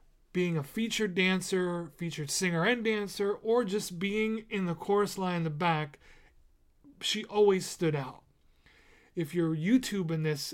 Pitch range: 155-190 Hz